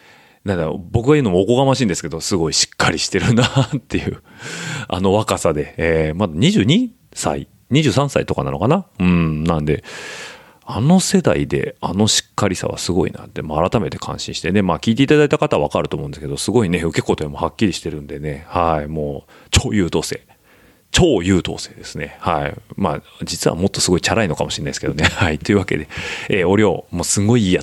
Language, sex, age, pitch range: Japanese, male, 30-49, 80-120 Hz